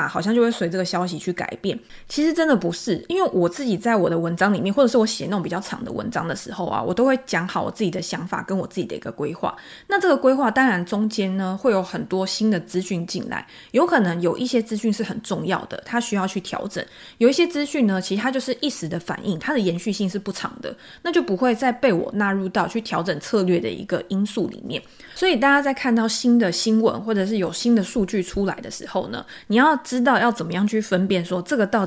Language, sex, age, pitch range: Chinese, female, 20-39, 185-240 Hz